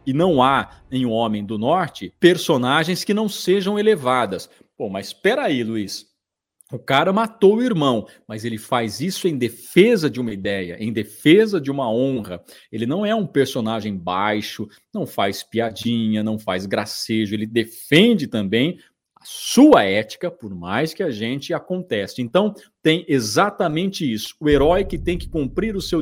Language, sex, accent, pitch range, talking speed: Portuguese, male, Brazilian, 110-160 Hz, 165 wpm